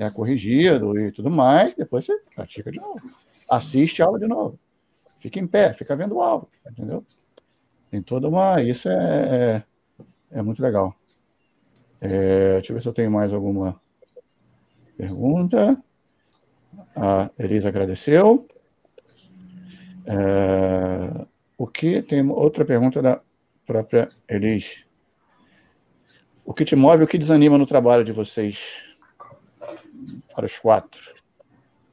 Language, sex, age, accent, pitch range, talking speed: Portuguese, male, 50-69, Brazilian, 115-185 Hz, 130 wpm